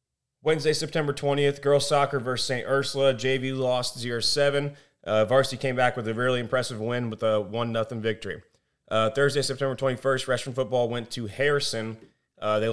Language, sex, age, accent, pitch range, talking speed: English, male, 30-49, American, 115-135 Hz, 165 wpm